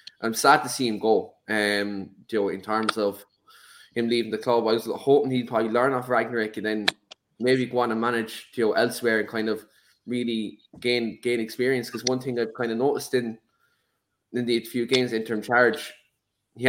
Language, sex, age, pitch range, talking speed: English, male, 10-29, 110-125 Hz, 205 wpm